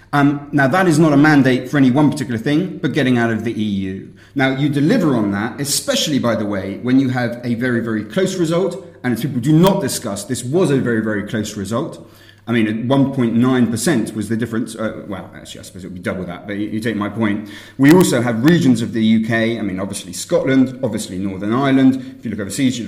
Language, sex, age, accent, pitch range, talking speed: English, male, 30-49, British, 110-150 Hz, 230 wpm